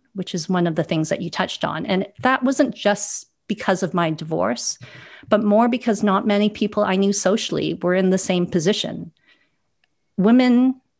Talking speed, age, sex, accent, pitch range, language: 180 wpm, 40-59, female, American, 175-210 Hz, English